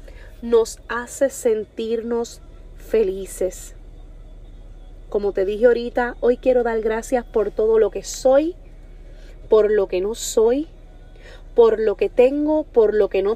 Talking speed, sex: 135 wpm, female